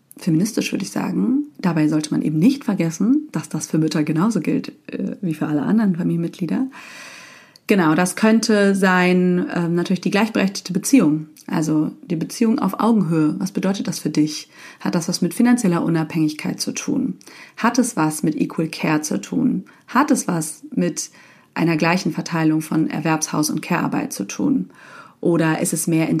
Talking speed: 165 wpm